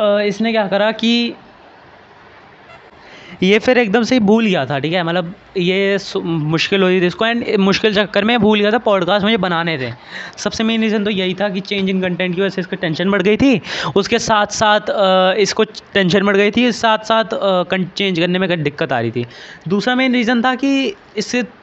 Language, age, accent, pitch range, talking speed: Hindi, 20-39, native, 185-220 Hz, 205 wpm